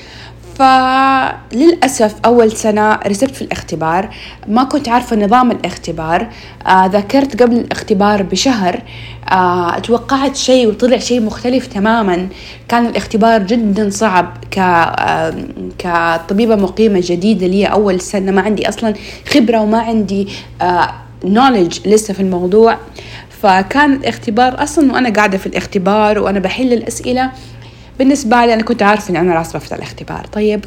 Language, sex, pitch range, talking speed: Arabic, female, 185-230 Hz, 120 wpm